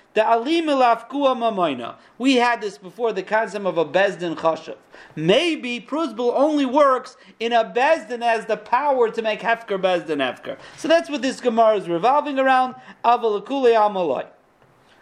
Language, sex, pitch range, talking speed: English, male, 195-275 Hz, 140 wpm